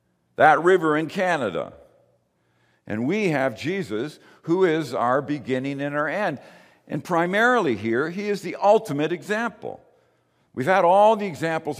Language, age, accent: English, 60-79, American